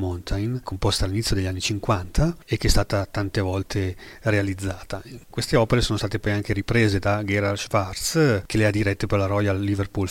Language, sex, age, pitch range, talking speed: Italian, male, 40-59, 100-115 Hz, 185 wpm